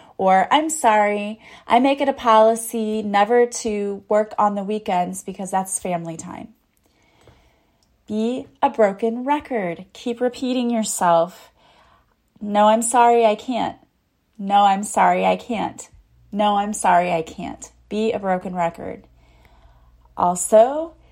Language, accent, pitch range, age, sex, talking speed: English, American, 185-225 Hz, 30-49, female, 130 wpm